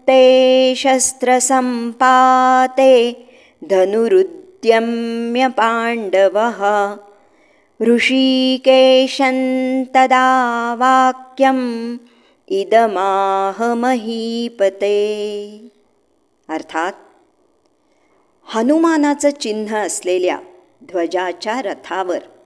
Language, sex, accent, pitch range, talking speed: Marathi, male, native, 200-300 Hz, 30 wpm